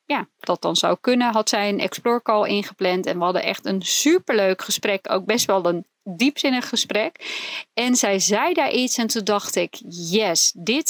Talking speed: 185 wpm